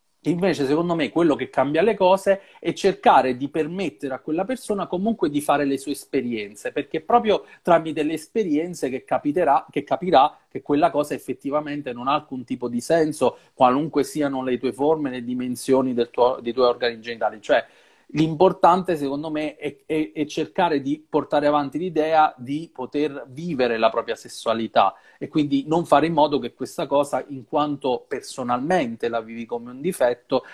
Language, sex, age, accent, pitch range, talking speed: Italian, male, 40-59, native, 125-155 Hz, 175 wpm